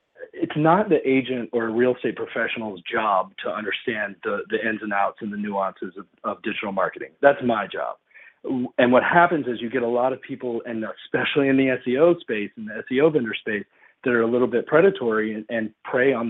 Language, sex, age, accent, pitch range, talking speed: English, male, 40-59, American, 110-130 Hz, 210 wpm